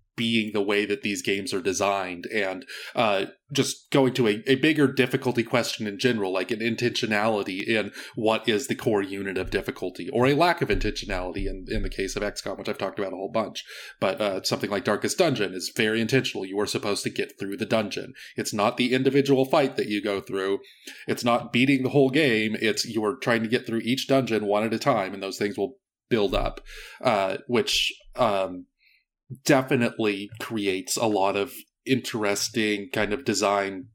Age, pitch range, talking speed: 30-49, 100-125 Hz, 195 wpm